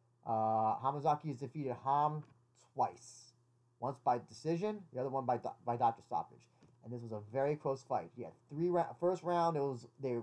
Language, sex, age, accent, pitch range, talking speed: English, male, 20-39, American, 120-170 Hz, 195 wpm